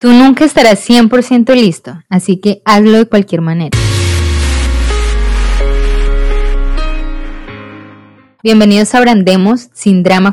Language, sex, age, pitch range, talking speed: English, female, 20-39, 175-210 Hz, 95 wpm